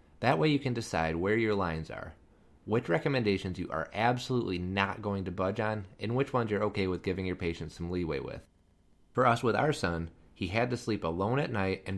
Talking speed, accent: 220 wpm, American